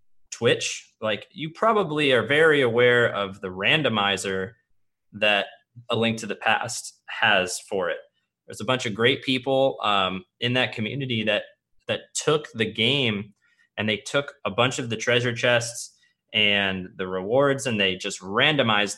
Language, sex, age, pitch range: English, male, 20-39, 100-120 Hz